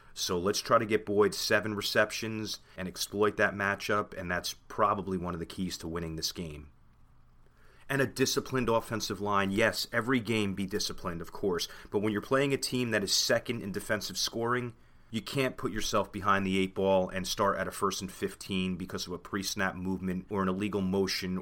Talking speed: 200 wpm